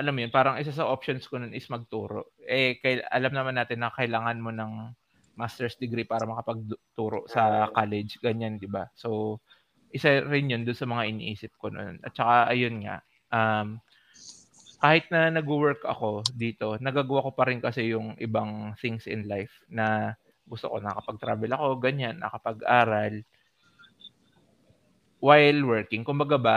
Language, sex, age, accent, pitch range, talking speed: Filipino, male, 20-39, native, 110-135 Hz, 165 wpm